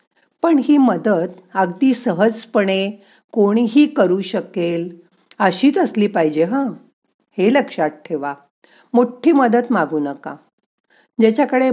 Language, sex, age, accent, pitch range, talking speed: Marathi, female, 40-59, native, 170-235 Hz, 100 wpm